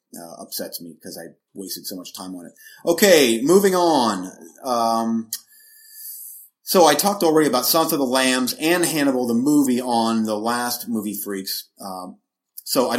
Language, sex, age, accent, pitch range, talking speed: English, male, 30-49, American, 115-170 Hz, 165 wpm